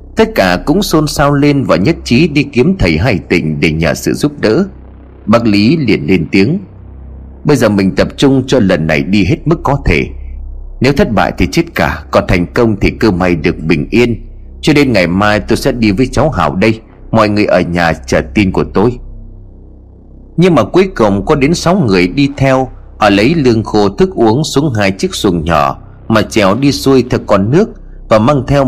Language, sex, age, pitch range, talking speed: Vietnamese, male, 30-49, 90-140 Hz, 215 wpm